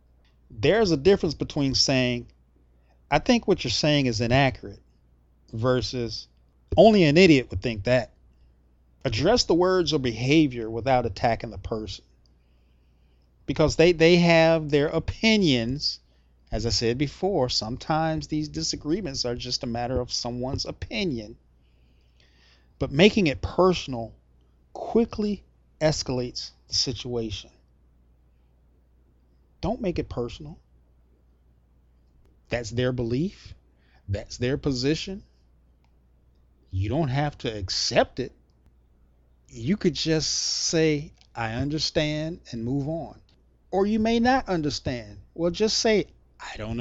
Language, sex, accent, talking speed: English, male, American, 115 wpm